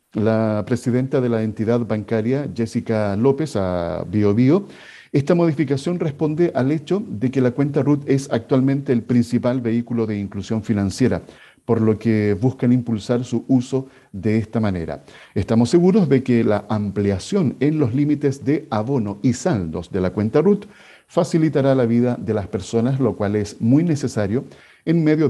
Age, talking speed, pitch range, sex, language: 50-69, 165 wpm, 110-145 Hz, male, Spanish